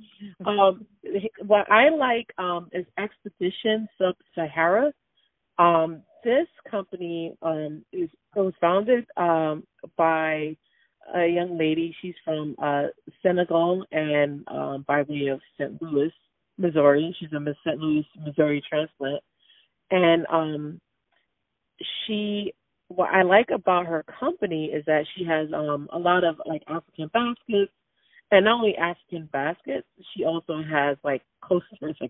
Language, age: English, 30-49